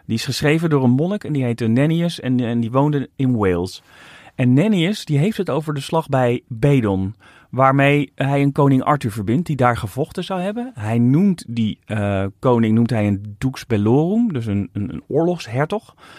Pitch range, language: 115-150 Hz, Dutch